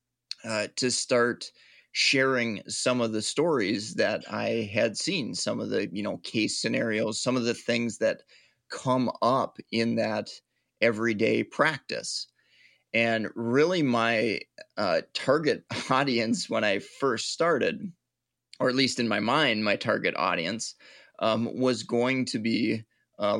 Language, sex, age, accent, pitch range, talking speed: English, male, 30-49, American, 110-125 Hz, 140 wpm